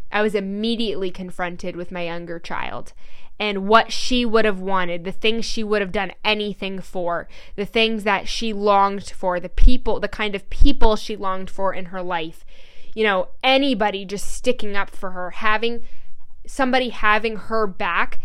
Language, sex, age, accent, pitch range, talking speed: English, female, 10-29, American, 190-225 Hz, 175 wpm